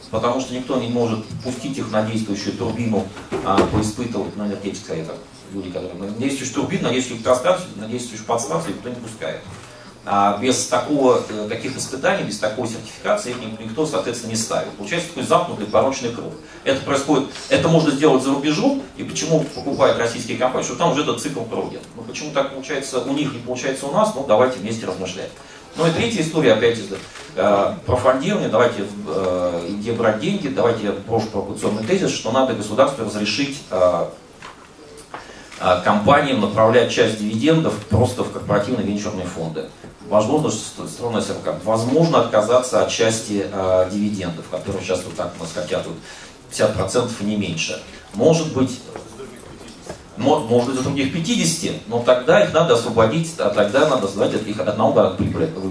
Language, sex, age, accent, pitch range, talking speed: Russian, male, 40-59, native, 105-135 Hz, 165 wpm